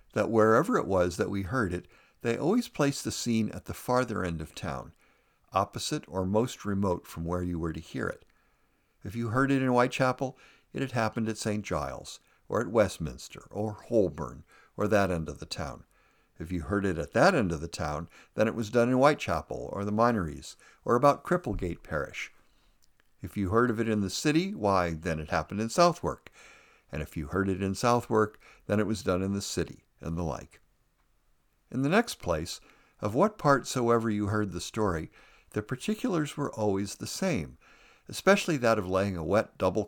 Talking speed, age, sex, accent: 200 wpm, 60-79, male, American